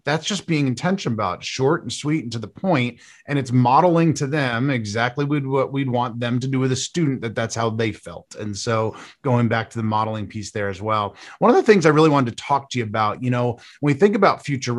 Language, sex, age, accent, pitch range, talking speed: English, male, 30-49, American, 115-150 Hz, 250 wpm